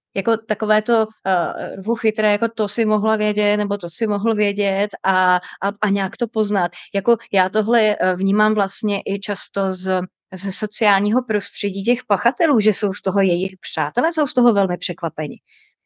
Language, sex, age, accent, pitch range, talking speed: Czech, female, 30-49, native, 190-220 Hz, 170 wpm